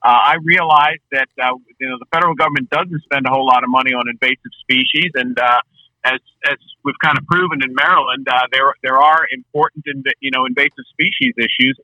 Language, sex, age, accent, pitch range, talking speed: English, male, 50-69, American, 130-150 Hz, 210 wpm